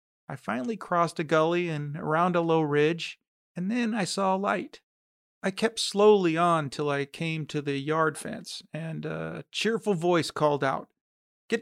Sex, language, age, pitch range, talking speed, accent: male, English, 40-59, 145-180 Hz, 175 wpm, American